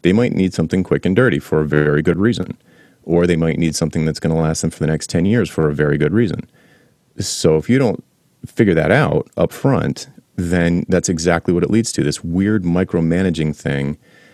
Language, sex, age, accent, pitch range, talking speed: English, male, 30-49, American, 80-95 Hz, 220 wpm